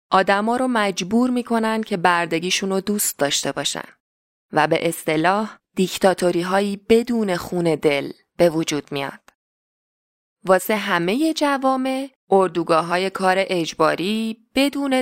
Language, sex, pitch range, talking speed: Persian, female, 185-235 Hz, 115 wpm